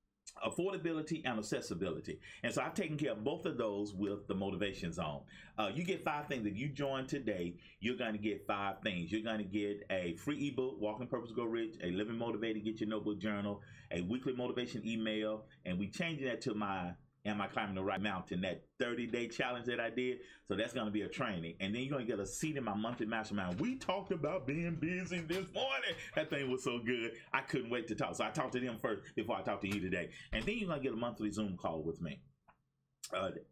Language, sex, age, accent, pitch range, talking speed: English, male, 30-49, American, 100-130 Hz, 235 wpm